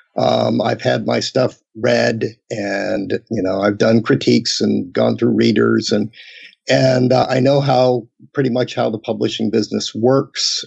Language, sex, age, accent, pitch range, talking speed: English, male, 50-69, American, 110-135 Hz, 165 wpm